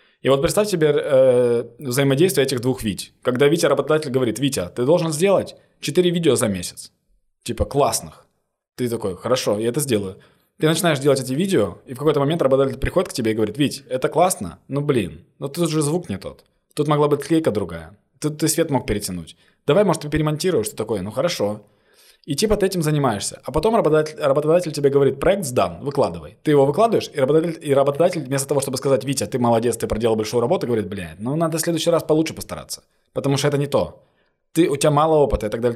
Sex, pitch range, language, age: male, 125-160 Hz, Ukrainian, 20-39